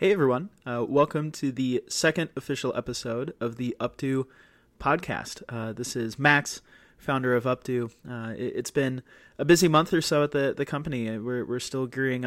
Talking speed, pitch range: 180 wpm, 120-140 Hz